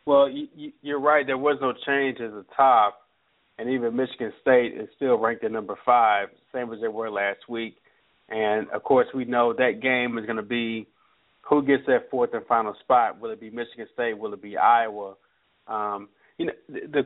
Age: 30-49